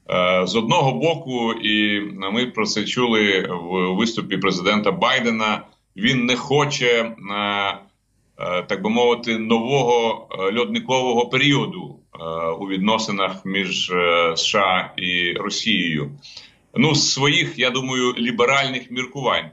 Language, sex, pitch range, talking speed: Ukrainian, male, 100-135 Hz, 105 wpm